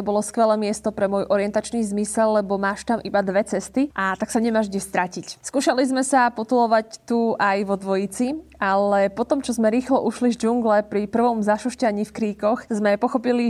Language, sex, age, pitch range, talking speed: Slovak, female, 20-39, 200-230 Hz, 190 wpm